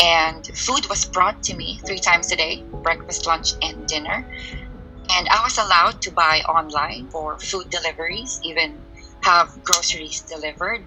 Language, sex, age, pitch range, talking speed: English, female, 20-39, 160-180 Hz, 155 wpm